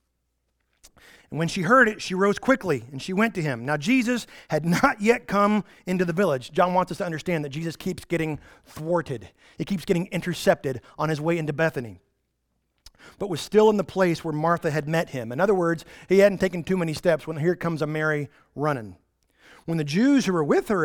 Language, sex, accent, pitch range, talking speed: English, male, American, 155-210 Hz, 215 wpm